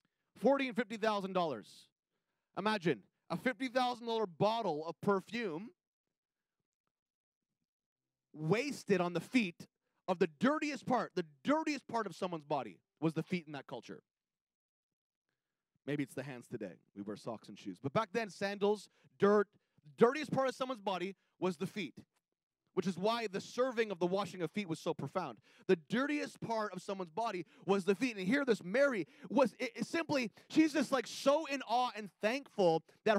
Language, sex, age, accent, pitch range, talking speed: English, male, 30-49, American, 170-235 Hz, 165 wpm